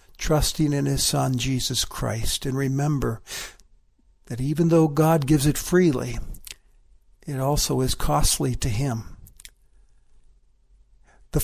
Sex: male